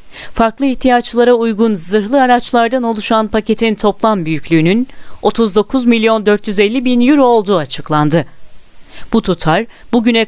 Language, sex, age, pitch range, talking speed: Turkish, female, 40-59, 205-250 Hz, 100 wpm